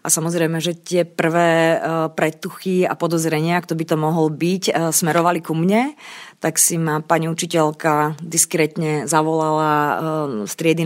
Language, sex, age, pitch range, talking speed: Slovak, female, 30-49, 155-175 Hz, 140 wpm